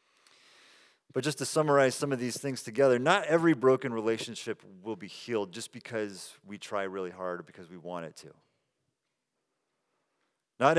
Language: English